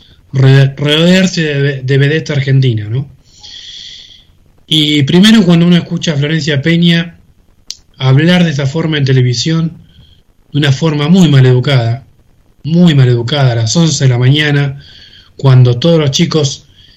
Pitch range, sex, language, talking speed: 125-155 Hz, male, Spanish, 145 wpm